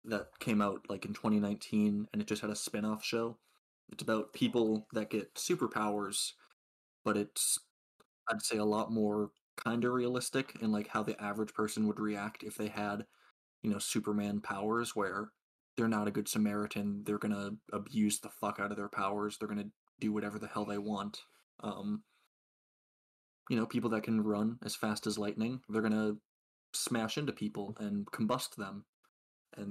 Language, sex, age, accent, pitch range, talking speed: English, male, 20-39, American, 105-115 Hz, 180 wpm